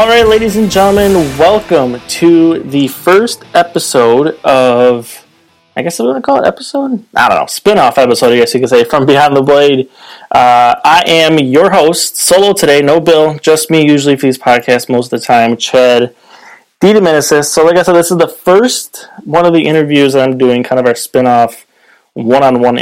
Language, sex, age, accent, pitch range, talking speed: English, male, 20-39, American, 115-160 Hz, 190 wpm